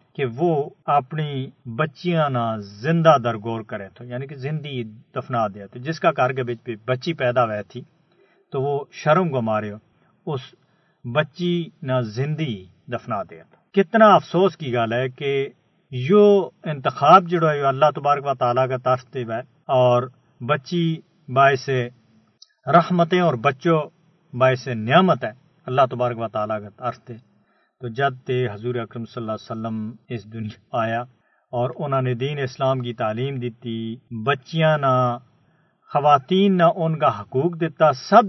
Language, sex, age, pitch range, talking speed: Urdu, male, 50-69, 120-160 Hz, 145 wpm